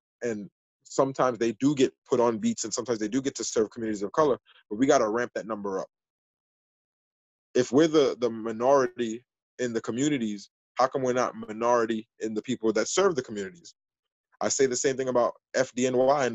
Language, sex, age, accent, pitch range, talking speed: English, male, 20-39, American, 115-140 Hz, 200 wpm